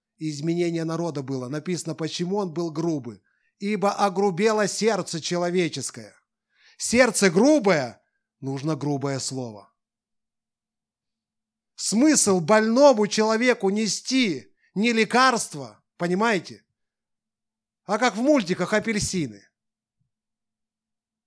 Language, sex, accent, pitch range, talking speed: Russian, male, native, 135-220 Hz, 80 wpm